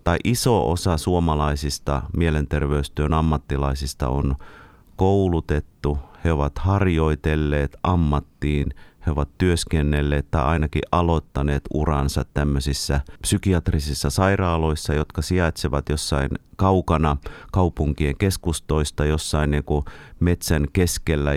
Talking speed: 85 wpm